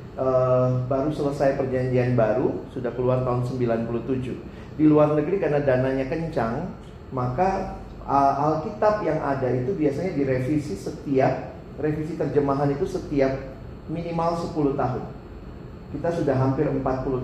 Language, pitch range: Indonesian, 125-155 Hz